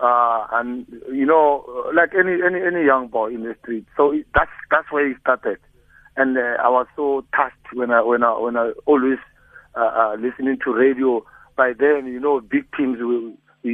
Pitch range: 130-150 Hz